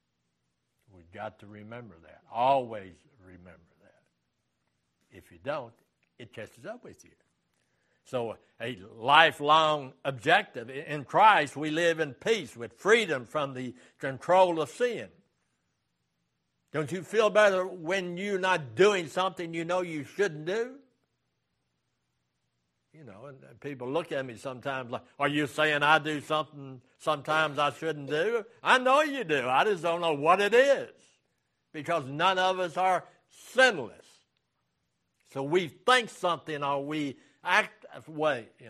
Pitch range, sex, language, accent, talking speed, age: 130-180 Hz, male, English, American, 145 wpm, 60-79